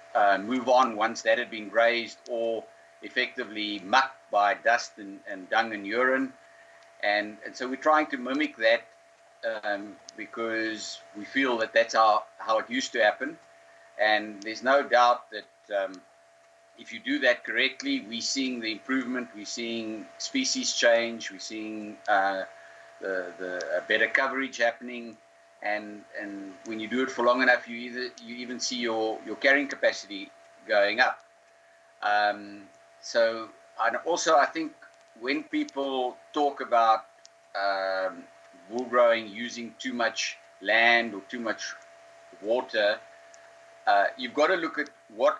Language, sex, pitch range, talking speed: English, male, 105-130 Hz, 150 wpm